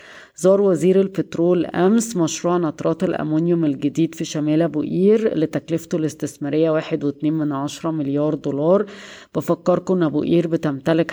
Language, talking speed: Arabic, 135 wpm